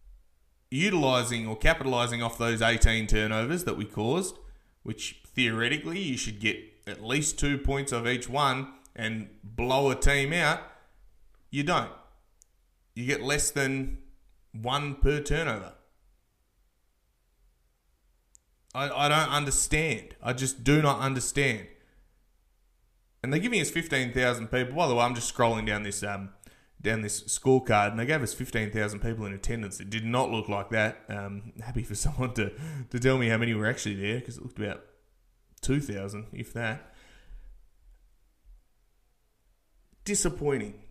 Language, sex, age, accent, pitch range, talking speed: English, male, 20-39, Australian, 105-135 Hz, 145 wpm